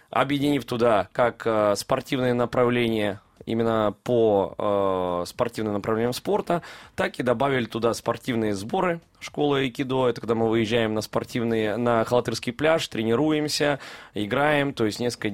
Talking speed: 125 wpm